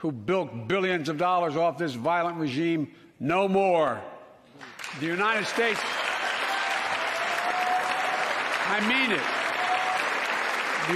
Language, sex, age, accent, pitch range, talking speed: Swedish, male, 60-79, American, 170-215 Hz, 100 wpm